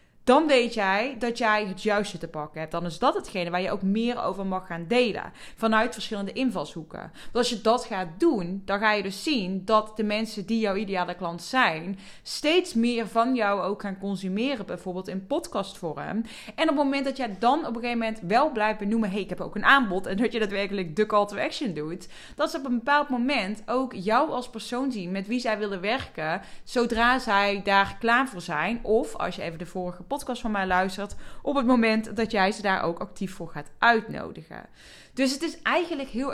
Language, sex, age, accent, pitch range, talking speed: Dutch, female, 20-39, Dutch, 195-255 Hz, 220 wpm